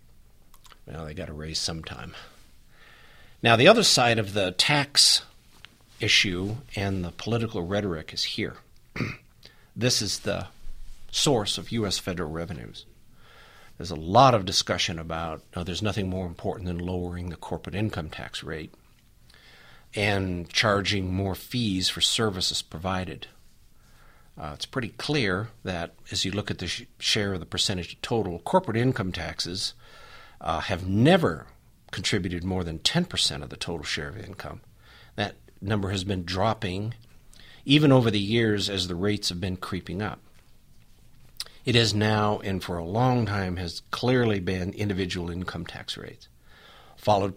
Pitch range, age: 90-110 Hz, 50-69